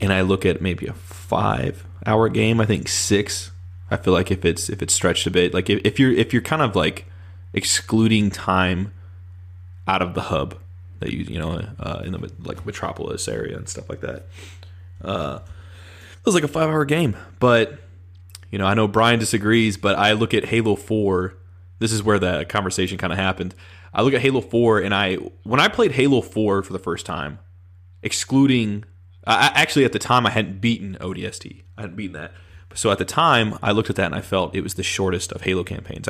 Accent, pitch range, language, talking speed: American, 90-110 Hz, English, 210 wpm